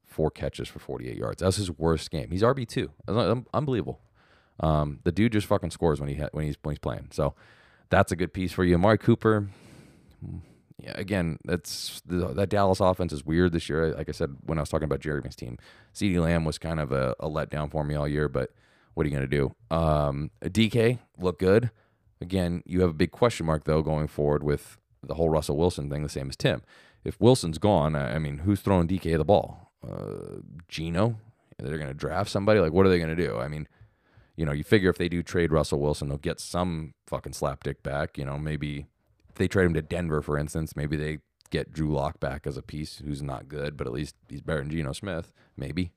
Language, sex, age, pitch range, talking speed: English, male, 20-39, 75-95 Hz, 225 wpm